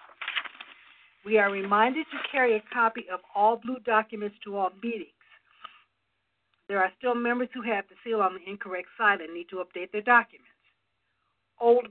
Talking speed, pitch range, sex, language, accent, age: 165 wpm, 195-240 Hz, female, English, American, 60-79